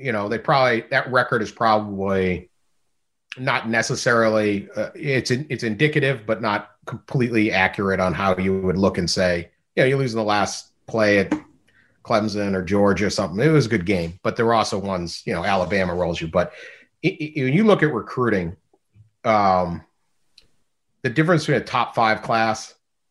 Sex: male